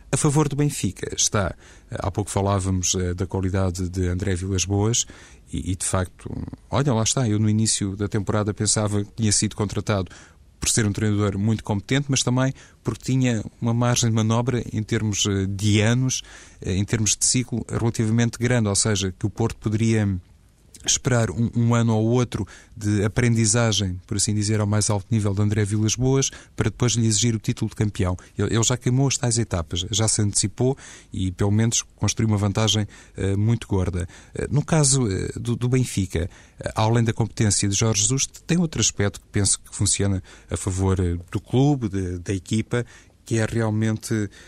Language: Portuguese